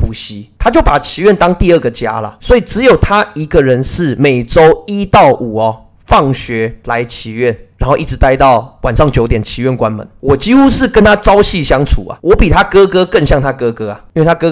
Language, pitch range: Chinese, 110-150 Hz